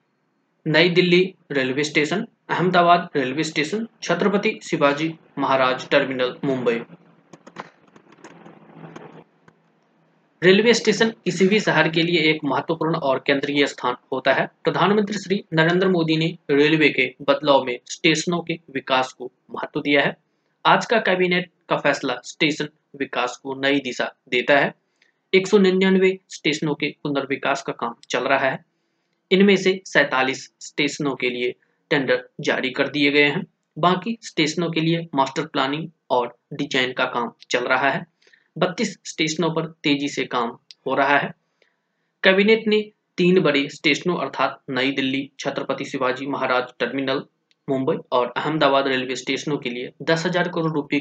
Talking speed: 140 wpm